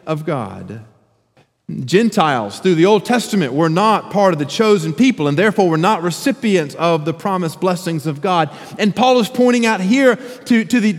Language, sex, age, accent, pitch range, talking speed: English, male, 40-59, American, 145-225 Hz, 180 wpm